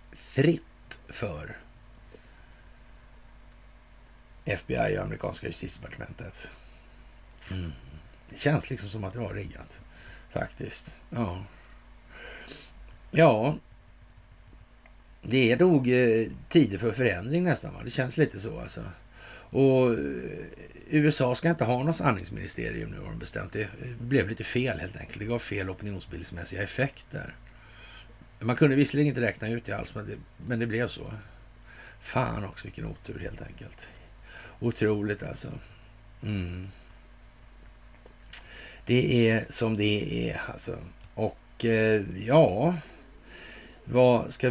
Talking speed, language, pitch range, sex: 120 wpm, Swedish, 105-130 Hz, male